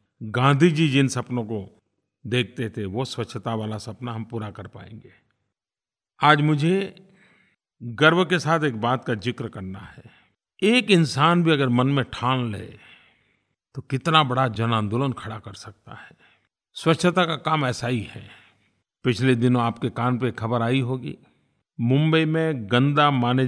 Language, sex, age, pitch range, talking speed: Hindi, male, 50-69, 110-150 Hz, 155 wpm